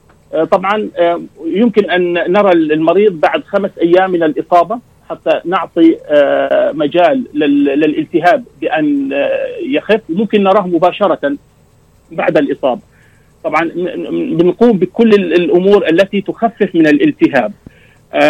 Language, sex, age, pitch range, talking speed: Arabic, male, 40-59, 160-220 Hz, 95 wpm